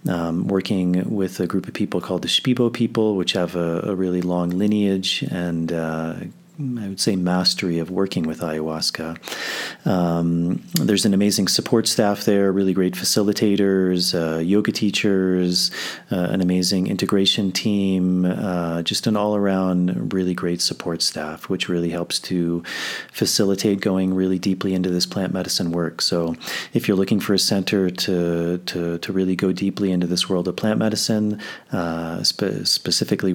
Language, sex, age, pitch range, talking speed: English, male, 30-49, 85-100 Hz, 160 wpm